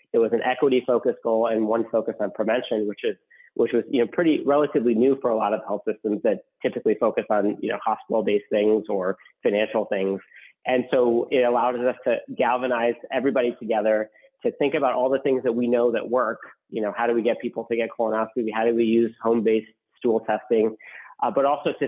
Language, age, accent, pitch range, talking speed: English, 30-49, American, 115-130 Hz, 210 wpm